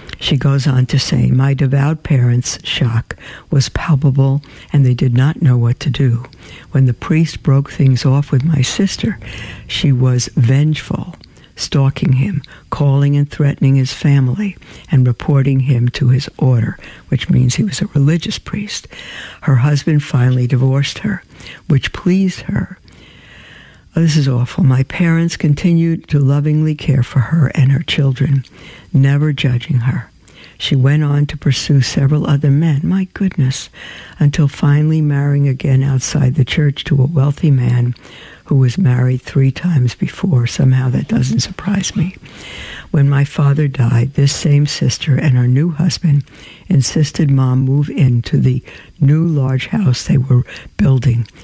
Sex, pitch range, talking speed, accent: female, 130-150 Hz, 150 wpm, American